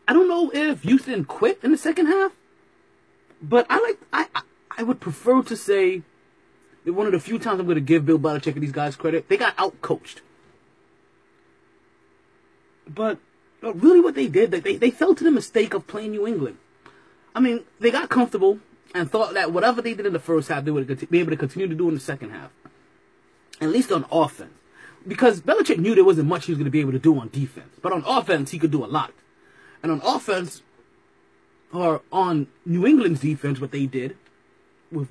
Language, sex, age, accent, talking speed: English, male, 30-49, American, 210 wpm